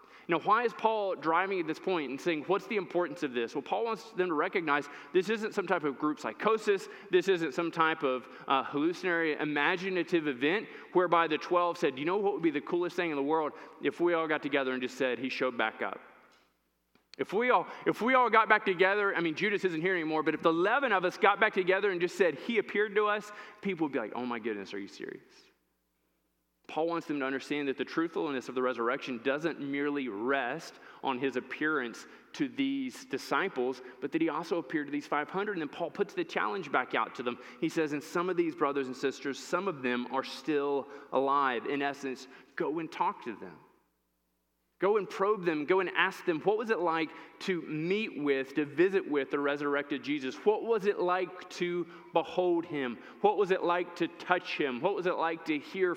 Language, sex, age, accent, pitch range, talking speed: English, male, 20-39, American, 135-185 Hz, 220 wpm